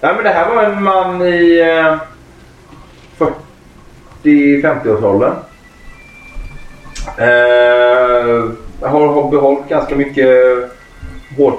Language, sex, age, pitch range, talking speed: Swedish, male, 30-49, 105-145 Hz, 95 wpm